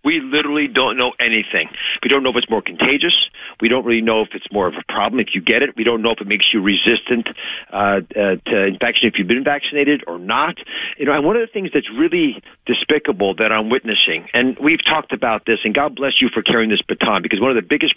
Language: English